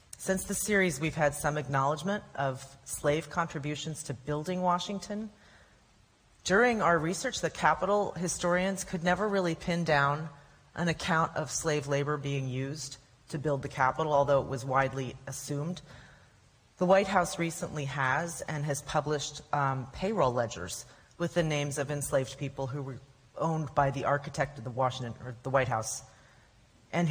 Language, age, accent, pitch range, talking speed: English, 30-49, American, 130-170 Hz, 155 wpm